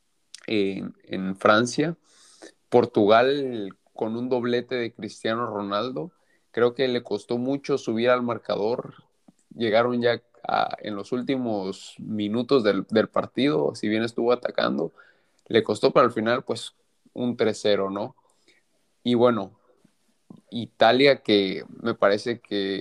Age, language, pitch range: 30-49, Spanish, 105-125 Hz